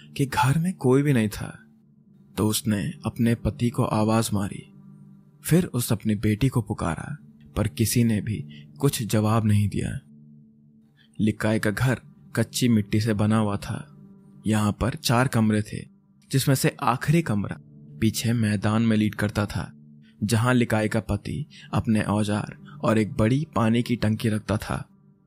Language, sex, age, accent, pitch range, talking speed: Hindi, male, 20-39, native, 105-135 Hz, 155 wpm